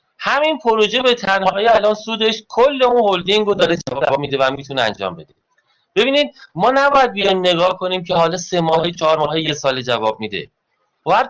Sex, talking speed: male, 180 wpm